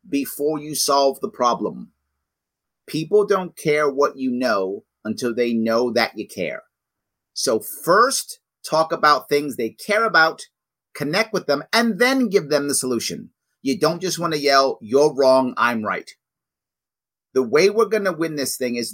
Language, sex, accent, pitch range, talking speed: English, male, American, 115-150 Hz, 170 wpm